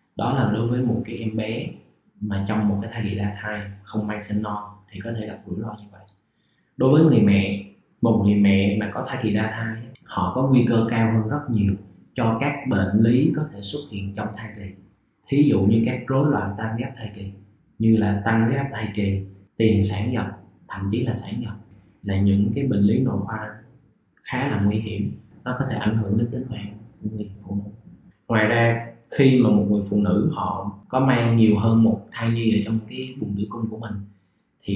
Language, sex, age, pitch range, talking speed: Vietnamese, male, 20-39, 105-120 Hz, 225 wpm